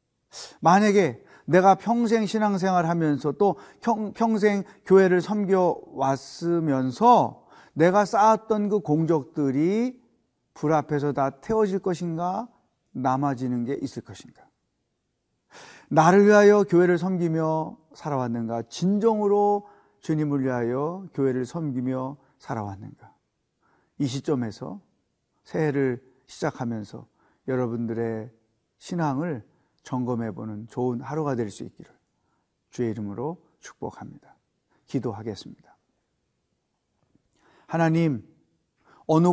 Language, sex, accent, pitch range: Korean, male, native, 130-185 Hz